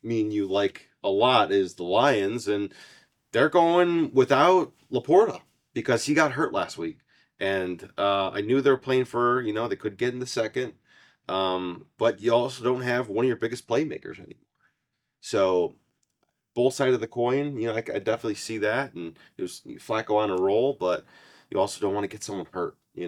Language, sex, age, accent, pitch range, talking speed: English, male, 30-49, American, 95-130 Hz, 195 wpm